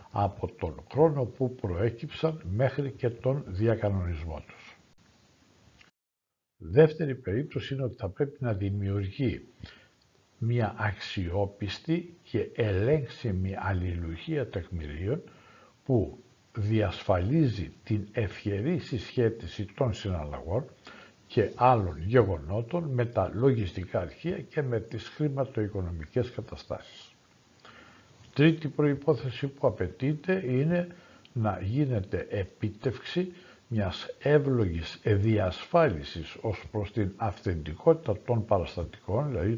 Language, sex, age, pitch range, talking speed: Greek, male, 60-79, 95-130 Hz, 90 wpm